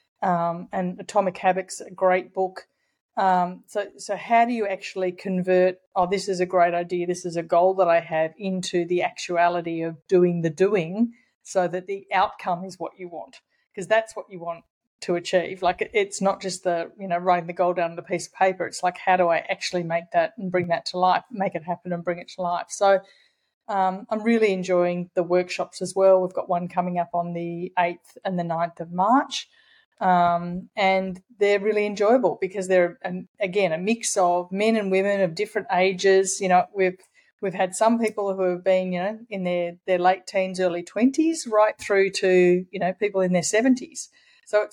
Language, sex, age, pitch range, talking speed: English, female, 30-49, 180-205 Hz, 210 wpm